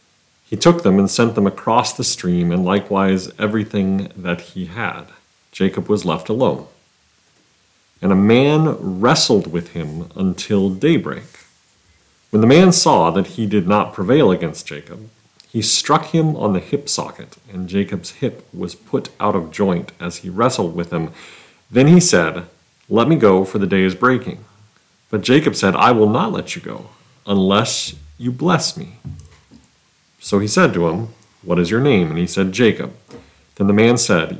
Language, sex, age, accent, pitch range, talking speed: English, male, 40-59, American, 95-120 Hz, 175 wpm